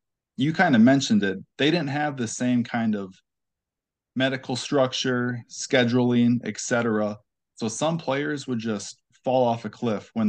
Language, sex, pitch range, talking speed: English, male, 105-125 Hz, 155 wpm